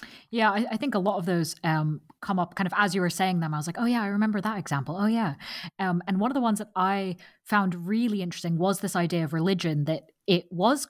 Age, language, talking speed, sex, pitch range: 20-39, English, 260 wpm, female, 165-210 Hz